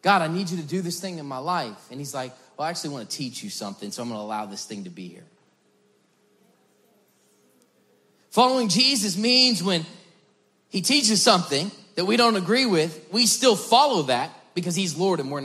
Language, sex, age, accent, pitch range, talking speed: English, male, 30-49, American, 155-220 Hz, 205 wpm